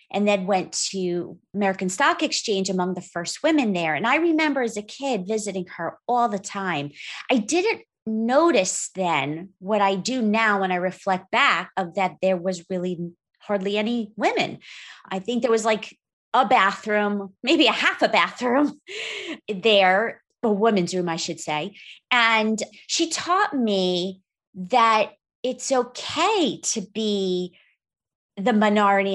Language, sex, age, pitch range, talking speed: English, female, 30-49, 190-245 Hz, 150 wpm